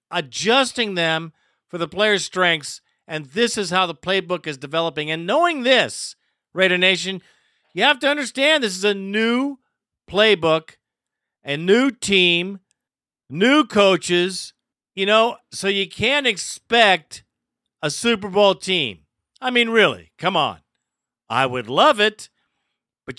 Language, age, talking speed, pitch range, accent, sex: English, 50-69, 135 wpm, 180-230 Hz, American, male